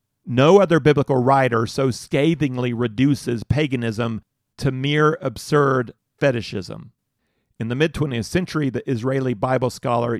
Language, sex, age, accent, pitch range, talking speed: English, male, 40-59, American, 115-140 Hz, 120 wpm